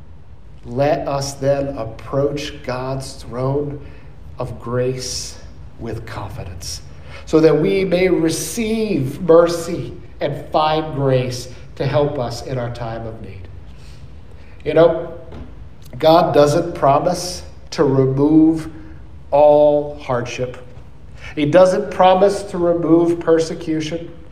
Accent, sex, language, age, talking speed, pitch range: American, male, English, 50-69, 105 wpm, 115-155 Hz